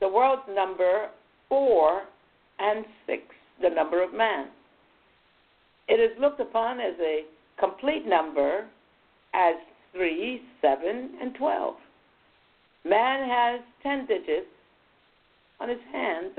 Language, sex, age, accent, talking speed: English, female, 60-79, American, 110 wpm